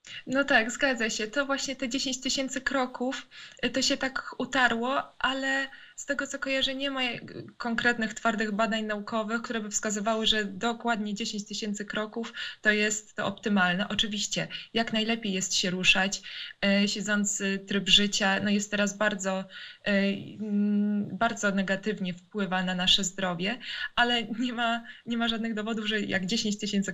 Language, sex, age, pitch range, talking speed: Polish, female, 20-39, 200-235 Hz, 145 wpm